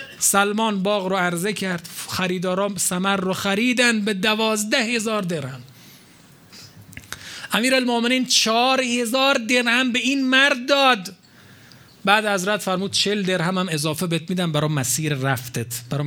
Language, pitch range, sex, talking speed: Persian, 135-190 Hz, male, 130 wpm